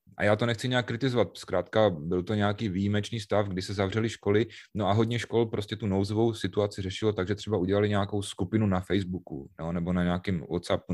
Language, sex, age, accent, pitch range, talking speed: Czech, male, 30-49, native, 95-115 Hz, 205 wpm